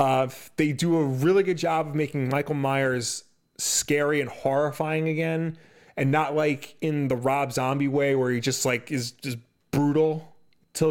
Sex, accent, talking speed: male, American, 170 wpm